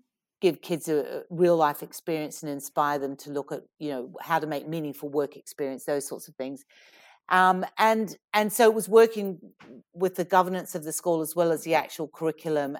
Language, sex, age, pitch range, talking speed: English, female, 50-69, 150-180 Hz, 200 wpm